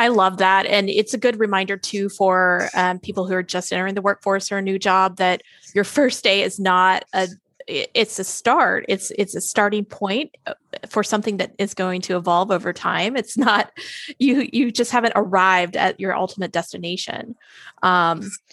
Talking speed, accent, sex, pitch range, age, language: 190 wpm, American, female, 185-225 Hz, 20-39, English